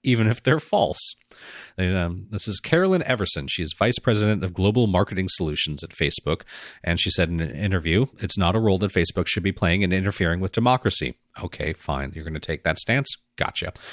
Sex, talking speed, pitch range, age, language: male, 200 wpm, 85-110 Hz, 40-59, English